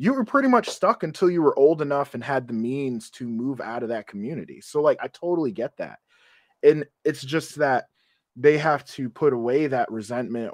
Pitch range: 120-175 Hz